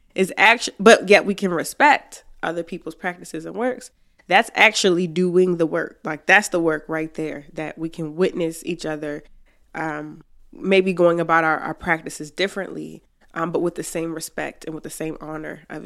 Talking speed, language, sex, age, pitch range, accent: 185 wpm, English, female, 20-39, 165-205 Hz, American